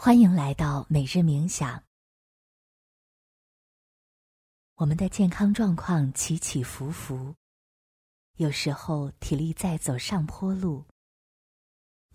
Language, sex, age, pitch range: Chinese, female, 20-39, 135-180 Hz